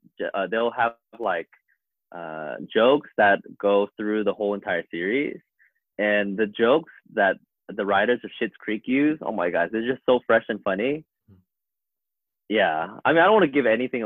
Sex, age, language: male, 20-39, English